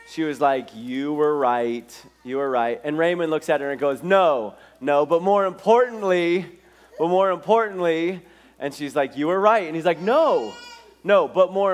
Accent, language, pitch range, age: American, English, 135-180 Hz, 30-49